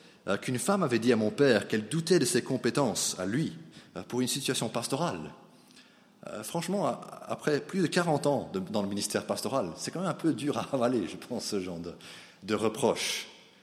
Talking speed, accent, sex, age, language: 200 wpm, French, male, 30-49, French